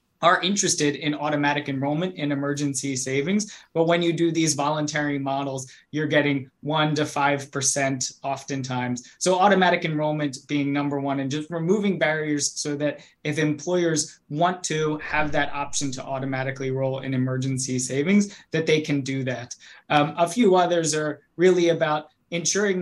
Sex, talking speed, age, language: male, 155 wpm, 20-39, English